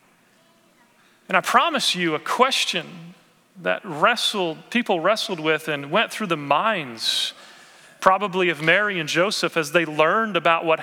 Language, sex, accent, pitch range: English, male, American, 175-220 Hz